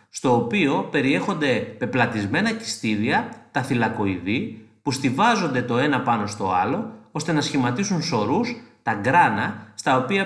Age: 30-49